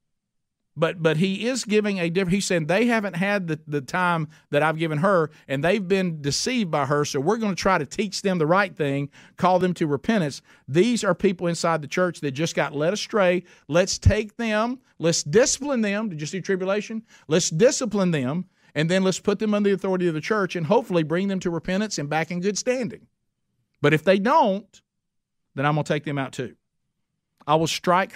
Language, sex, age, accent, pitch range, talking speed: English, male, 50-69, American, 135-190 Hz, 215 wpm